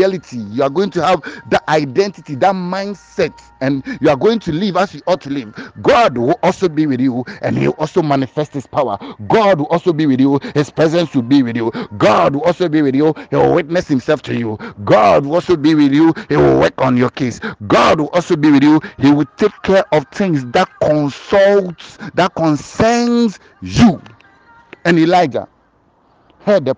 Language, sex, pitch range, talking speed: English, male, 130-175 Hz, 200 wpm